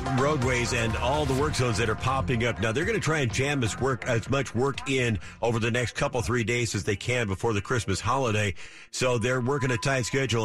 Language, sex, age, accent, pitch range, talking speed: English, male, 50-69, American, 105-140 Hz, 235 wpm